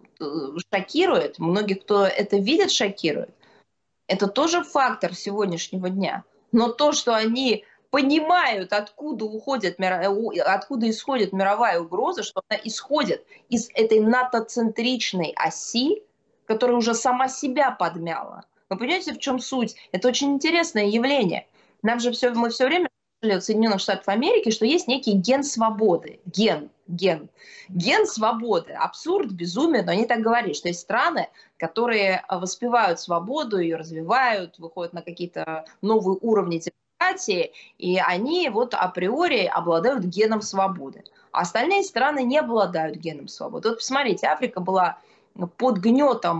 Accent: native